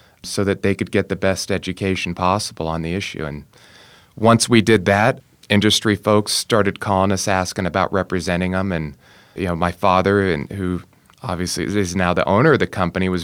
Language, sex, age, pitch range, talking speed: English, male, 30-49, 90-105 Hz, 190 wpm